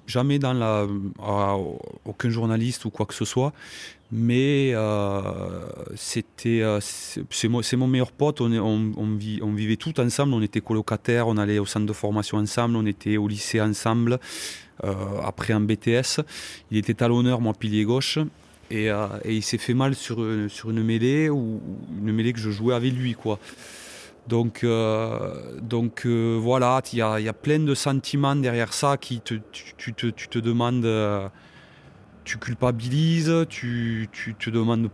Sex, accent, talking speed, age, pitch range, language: male, French, 175 wpm, 30-49, 110-130 Hz, French